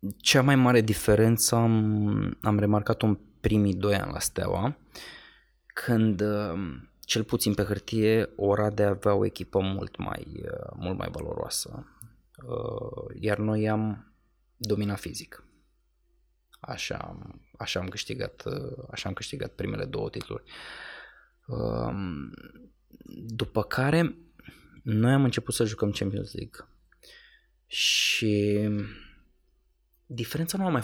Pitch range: 100-120 Hz